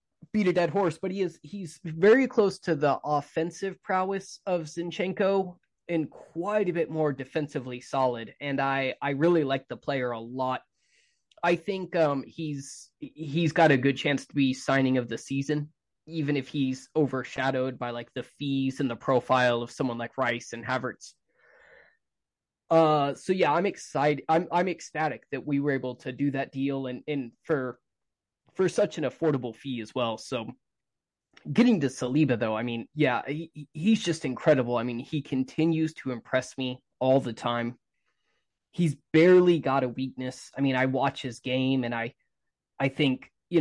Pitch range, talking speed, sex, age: 130-165 Hz, 175 wpm, male, 20-39